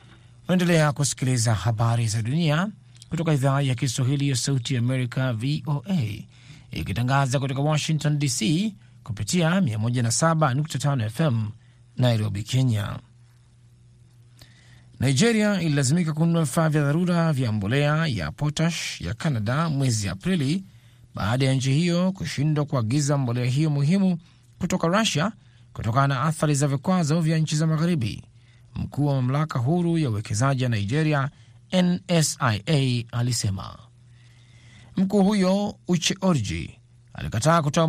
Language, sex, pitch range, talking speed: Swahili, male, 120-160 Hz, 115 wpm